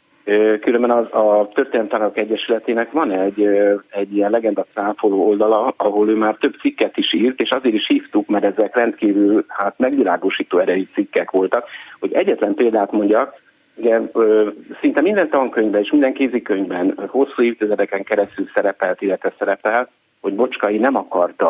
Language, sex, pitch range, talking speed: Hungarian, male, 105-135 Hz, 150 wpm